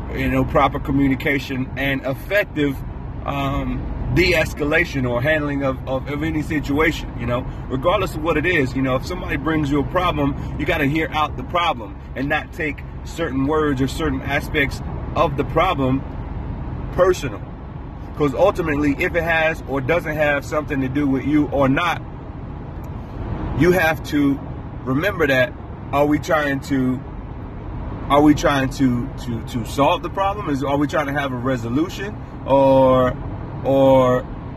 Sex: male